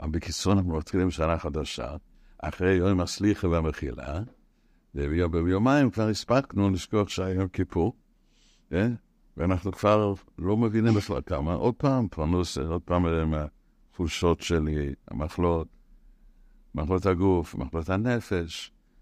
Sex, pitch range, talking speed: male, 80-105 Hz, 105 wpm